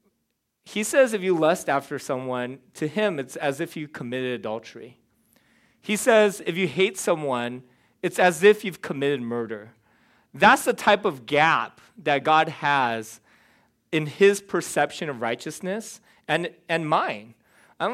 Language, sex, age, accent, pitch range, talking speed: English, male, 30-49, American, 140-185 Hz, 145 wpm